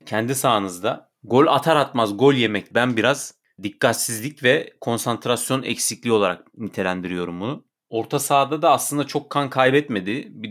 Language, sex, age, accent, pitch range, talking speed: Turkish, male, 30-49, native, 105-135 Hz, 135 wpm